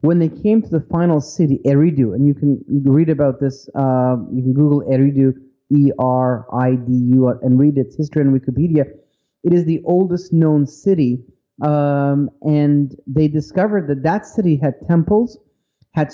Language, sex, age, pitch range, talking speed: English, male, 30-49, 140-185 Hz, 155 wpm